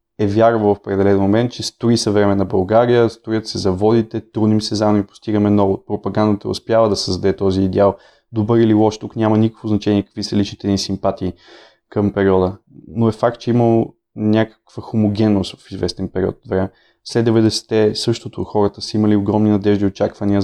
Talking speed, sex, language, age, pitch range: 180 wpm, male, Bulgarian, 20-39, 100-110 Hz